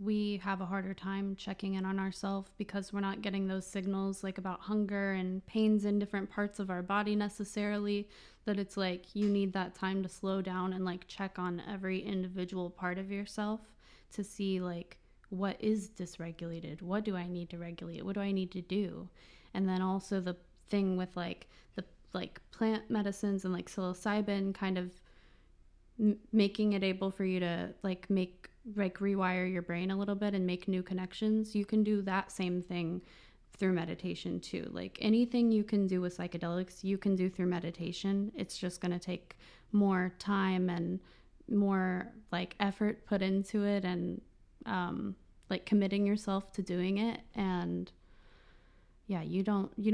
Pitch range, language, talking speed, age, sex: 180-205 Hz, English, 175 wpm, 20-39, female